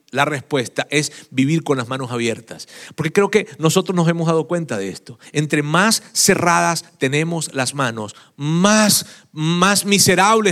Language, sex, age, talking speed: Spanish, male, 40-59, 155 wpm